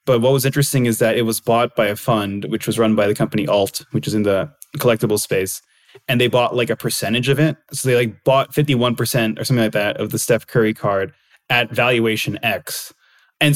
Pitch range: 115-140 Hz